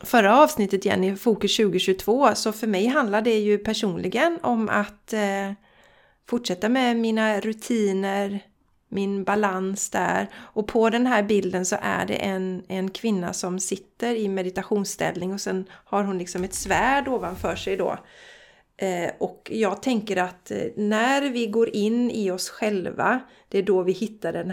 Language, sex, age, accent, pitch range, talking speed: Swedish, female, 30-49, native, 185-225 Hz, 155 wpm